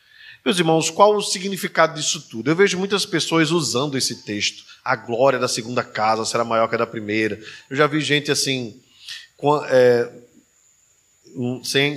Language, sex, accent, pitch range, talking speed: Portuguese, male, Brazilian, 130-175 Hz, 155 wpm